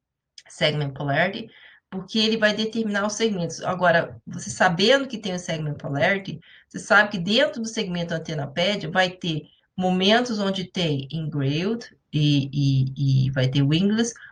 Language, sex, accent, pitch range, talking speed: Portuguese, female, Brazilian, 155-205 Hz, 145 wpm